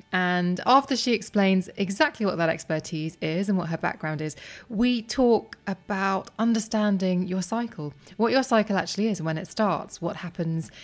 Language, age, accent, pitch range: English, 20-39, British, 170-210 Hz